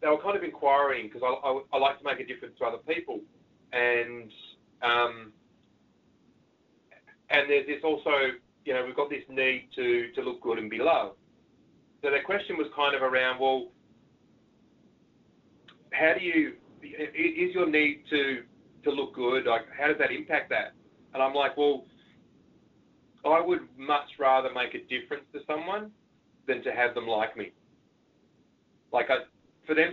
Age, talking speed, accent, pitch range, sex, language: 40-59, 165 wpm, Australian, 130-170 Hz, male, English